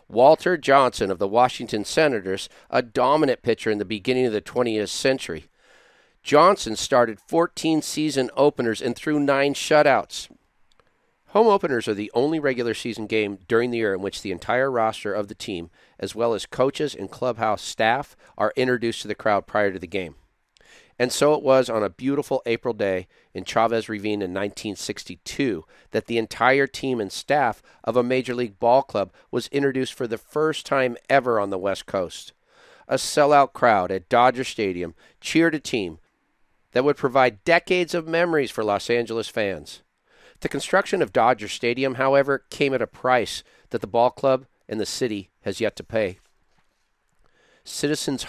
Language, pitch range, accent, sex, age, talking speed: English, 110-140 Hz, American, male, 50-69, 170 wpm